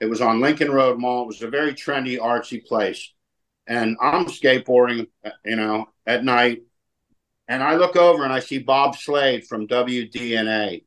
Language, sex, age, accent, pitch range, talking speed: English, male, 50-69, American, 115-140 Hz, 170 wpm